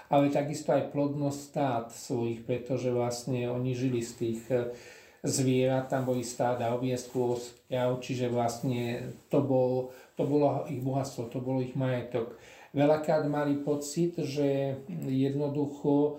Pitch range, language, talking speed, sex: 130-150 Hz, Slovak, 130 wpm, male